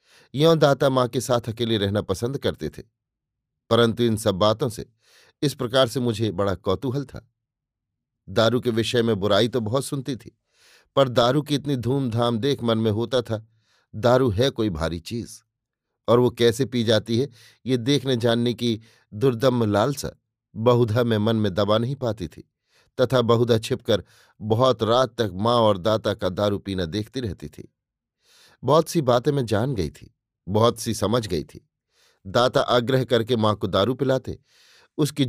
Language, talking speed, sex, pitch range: Hindi, 170 wpm, male, 110-130 Hz